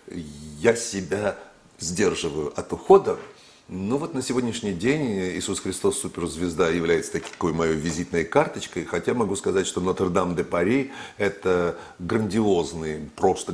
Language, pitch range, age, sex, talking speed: Russian, 85-105 Hz, 50-69, male, 135 wpm